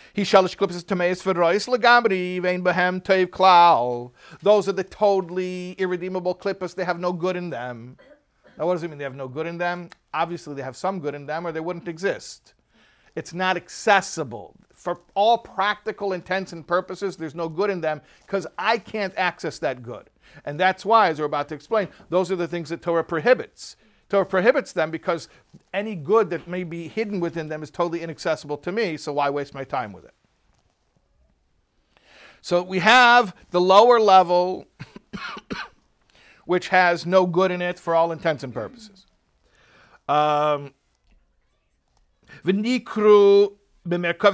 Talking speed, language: 150 wpm, English